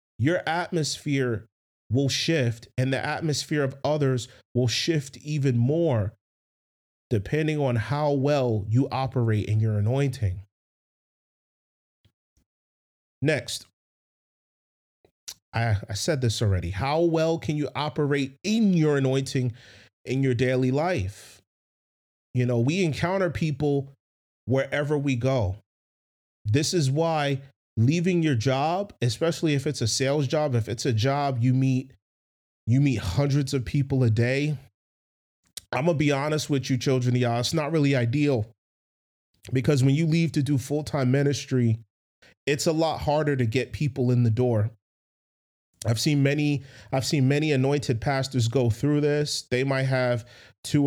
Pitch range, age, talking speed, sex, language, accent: 120-145 Hz, 30-49, 140 wpm, male, English, American